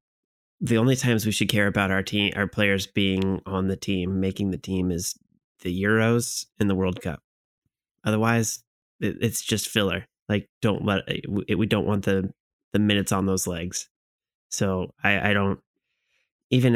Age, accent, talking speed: 20-39, American, 165 wpm